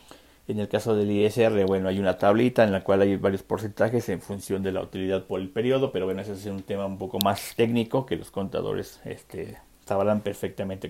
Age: 50-69